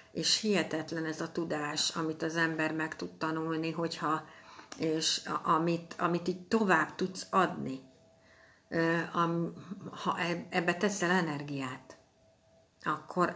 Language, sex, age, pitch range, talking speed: Hungarian, female, 60-79, 155-195 Hz, 115 wpm